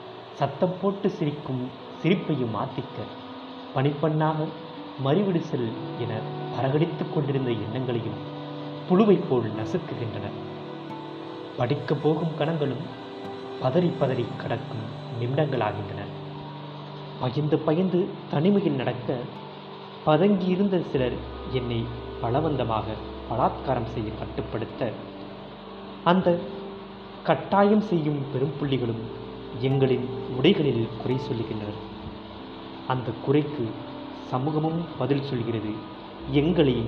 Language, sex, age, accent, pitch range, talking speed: Tamil, male, 30-49, native, 110-155 Hz, 75 wpm